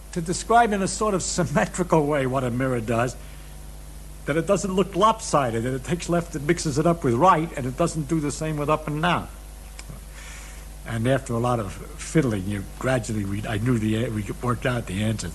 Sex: male